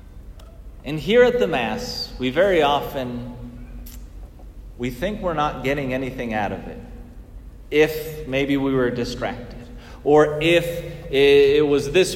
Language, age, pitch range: English, 30-49, 140-185 Hz